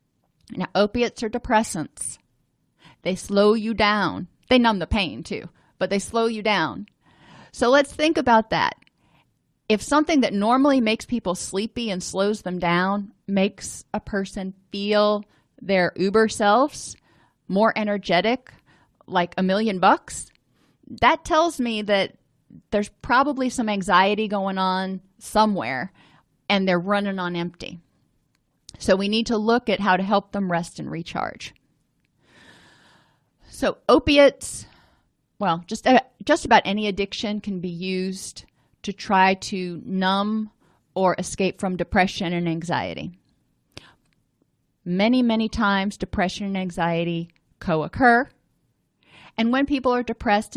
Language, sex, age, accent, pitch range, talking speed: English, female, 30-49, American, 180-225 Hz, 130 wpm